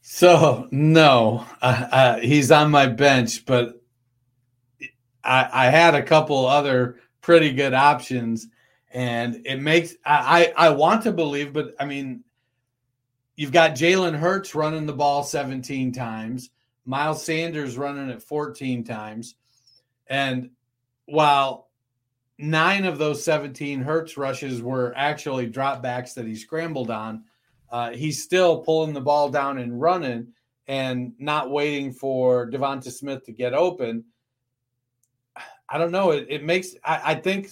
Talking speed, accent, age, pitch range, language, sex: 140 wpm, American, 40-59, 125-150 Hz, English, male